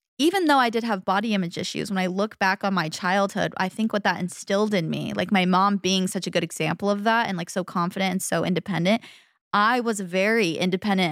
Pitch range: 185-220 Hz